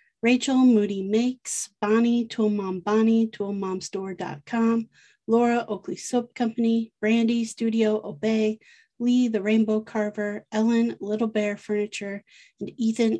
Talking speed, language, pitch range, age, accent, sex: 110 wpm, English, 205-235 Hz, 30-49, American, female